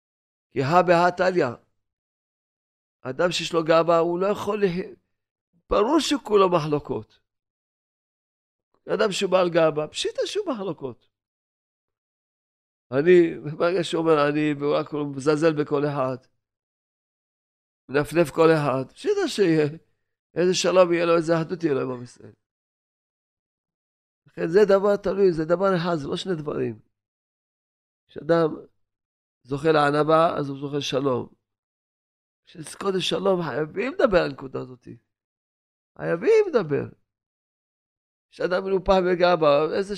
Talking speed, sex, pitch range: 115 wpm, male, 110-175 Hz